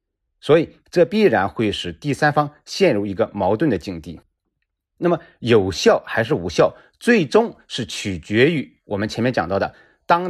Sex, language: male, Chinese